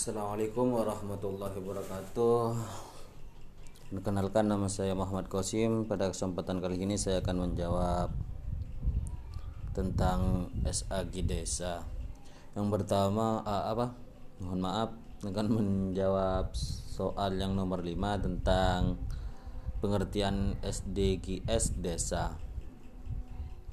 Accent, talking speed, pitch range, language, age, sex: native, 85 wpm, 95-110 Hz, Indonesian, 20-39, male